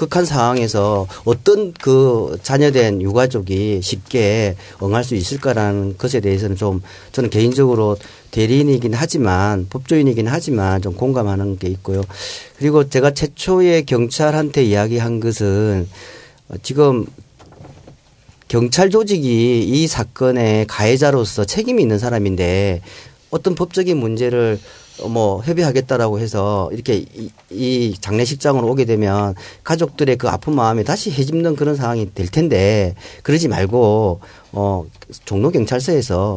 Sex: male